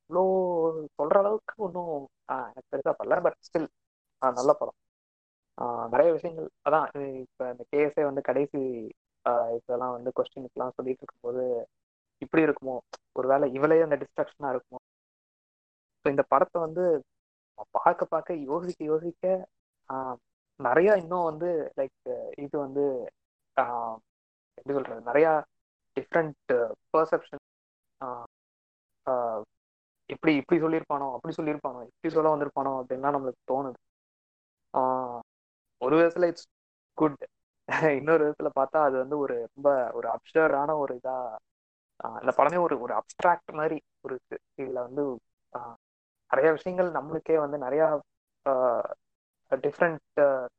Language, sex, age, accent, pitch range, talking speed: Tamil, female, 20-39, native, 125-160 Hz, 110 wpm